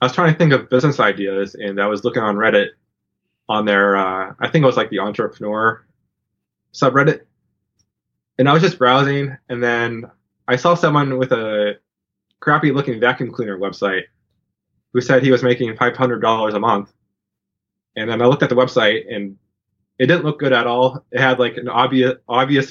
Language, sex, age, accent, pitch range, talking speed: English, male, 20-39, American, 105-135 Hz, 185 wpm